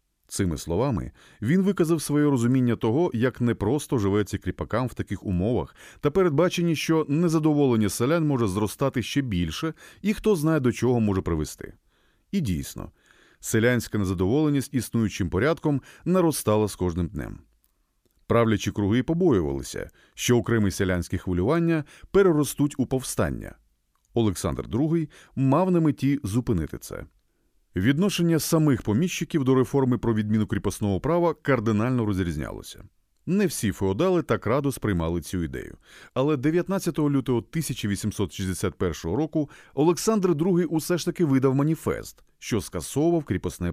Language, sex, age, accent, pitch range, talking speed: Ukrainian, male, 30-49, native, 100-155 Hz, 125 wpm